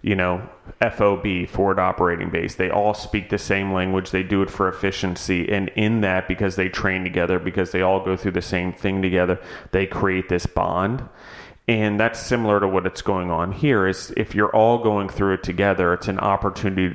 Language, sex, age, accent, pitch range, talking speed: English, male, 30-49, American, 90-100 Hz, 200 wpm